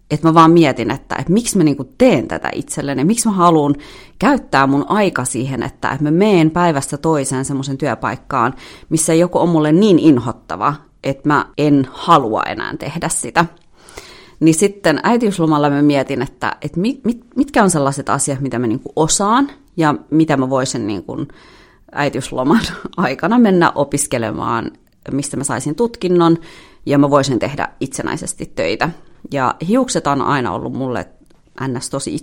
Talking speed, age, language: 160 wpm, 30-49, Finnish